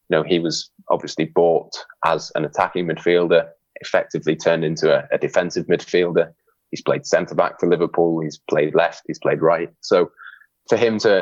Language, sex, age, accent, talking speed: English, male, 20-39, British, 165 wpm